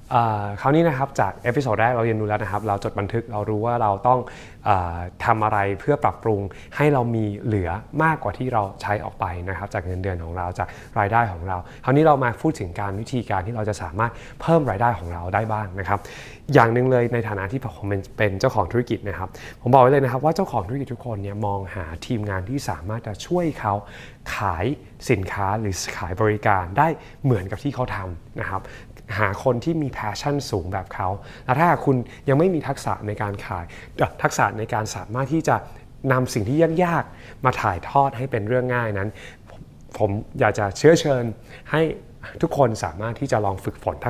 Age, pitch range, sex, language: 20-39, 100-130 Hz, male, Thai